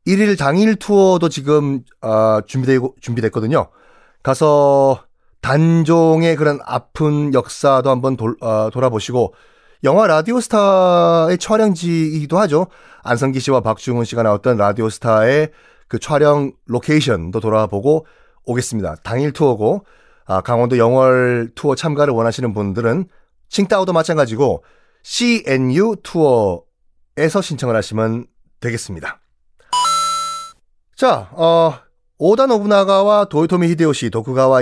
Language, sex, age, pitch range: Korean, male, 30-49, 115-170 Hz